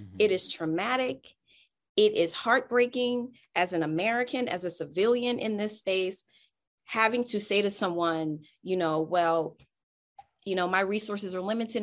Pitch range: 165-215 Hz